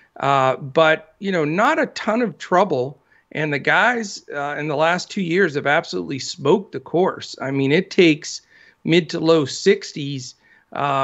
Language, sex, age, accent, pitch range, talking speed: English, male, 50-69, American, 145-190 Hz, 180 wpm